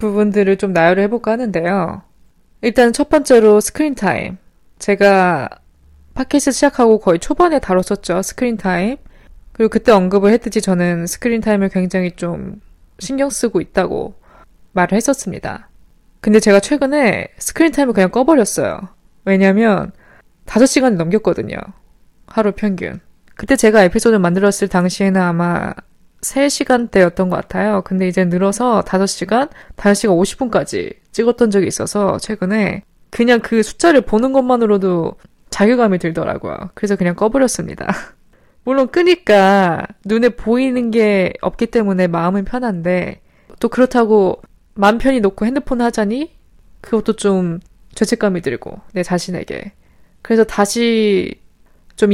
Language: Korean